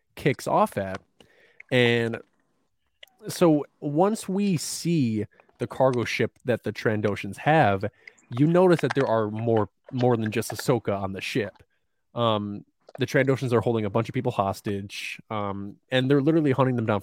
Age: 20-39